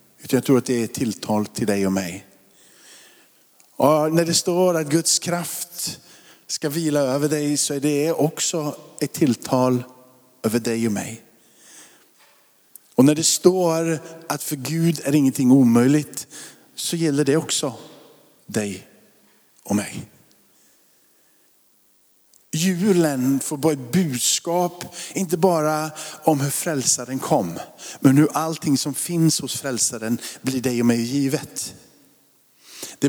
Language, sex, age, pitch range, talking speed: Swedish, male, 50-69, 130-165 Hz, 130 wpm